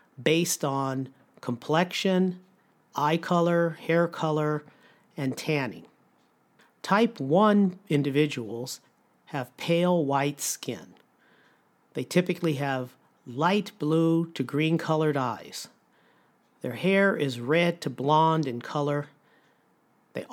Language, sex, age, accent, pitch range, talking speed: English, male, 50-69, American, 135-175 Hz, 95 wpm